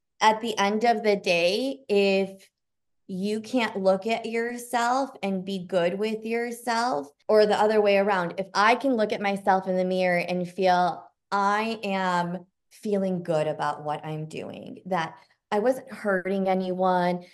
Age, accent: 20-39, American